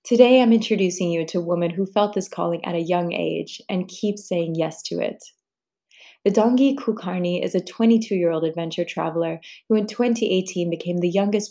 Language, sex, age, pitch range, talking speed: English, female, 20-39, 170-210 Hz, 180 wpm